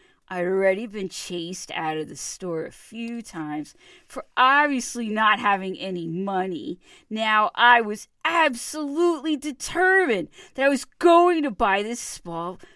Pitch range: 175-280 Hz